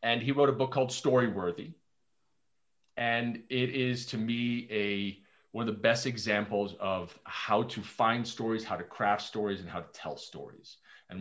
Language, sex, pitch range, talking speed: English, male, 105-130 Hz, 180 wpm